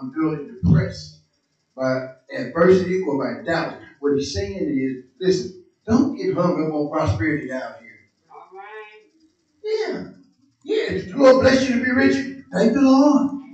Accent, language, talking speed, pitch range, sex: American, English, 150 wpm, 155-255 Hz, male